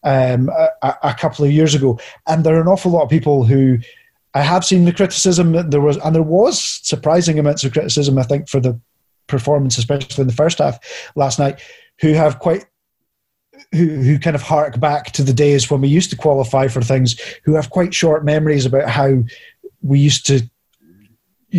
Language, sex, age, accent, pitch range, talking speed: English, male, 30-49, British, 135-160 Hz, 200 wpm